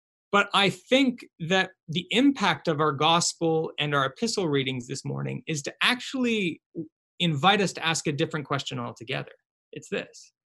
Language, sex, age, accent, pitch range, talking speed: English, male, 20-39, American, 150-200 Hz, 160 wpm